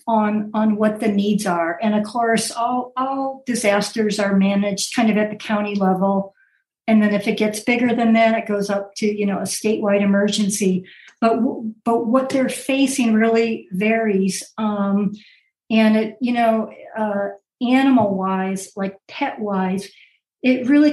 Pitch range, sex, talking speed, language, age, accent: 200-230 Hz, female, 160 wpm, English, 50-69, American